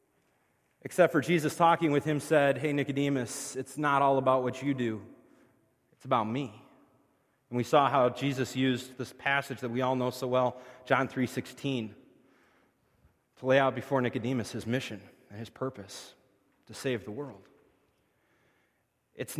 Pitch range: 125-145 Hz